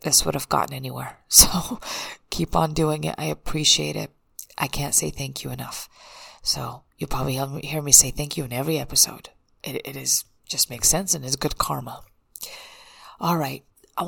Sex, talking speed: female, 185 wpm